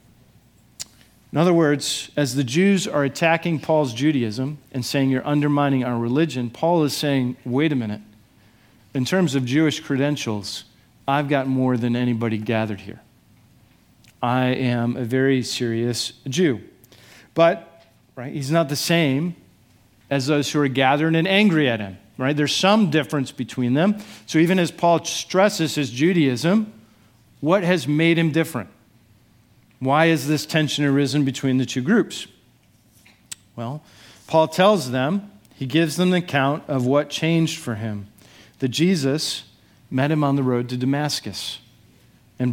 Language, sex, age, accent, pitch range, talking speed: English, male, 50-69, American, 120-155 Hz, 150 wpm